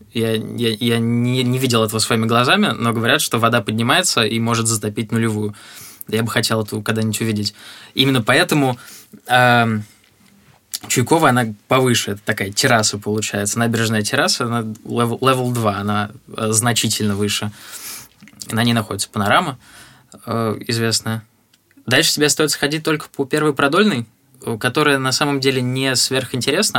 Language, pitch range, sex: Russian, 110-125 Hz, male